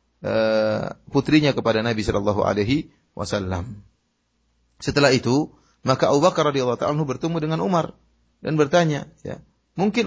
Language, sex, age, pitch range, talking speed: Indonesian, male, 30-49, 115-160 Hz, 105 wpm